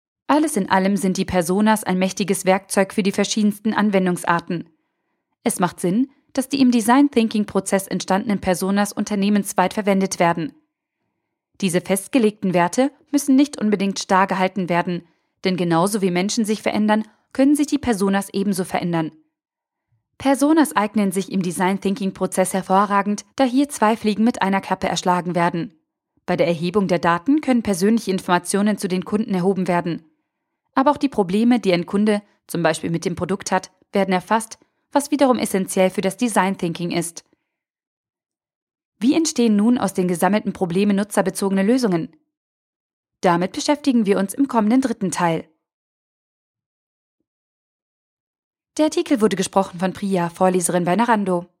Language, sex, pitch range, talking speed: German, female, 185-240 Hz, 140 wpm